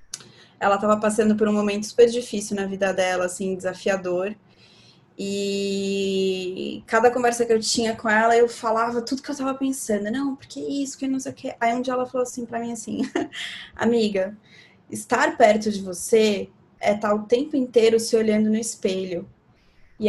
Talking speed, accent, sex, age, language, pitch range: 180 wpm, Brazilian, female, 20-39, Portuguese, 205-255 Hz